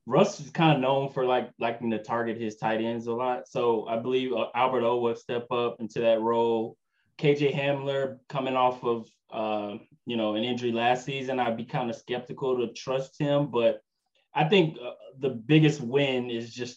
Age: 20-39